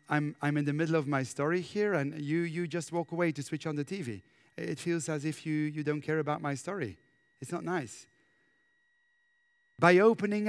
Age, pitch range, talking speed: 30-49, 150-235 Hz, 205 wpm